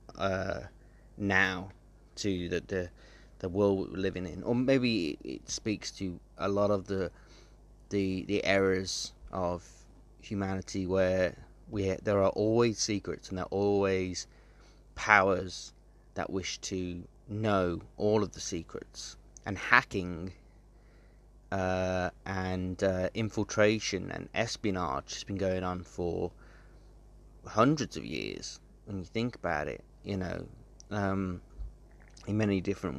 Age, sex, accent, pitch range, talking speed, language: 30-49, male, British, 90-105 Hz, 125 wpm, English